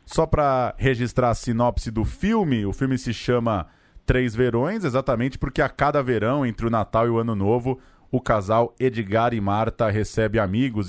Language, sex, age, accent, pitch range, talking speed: Portuguese, male, 20-39, Brazilian, 110-140 Hz, 175 wpm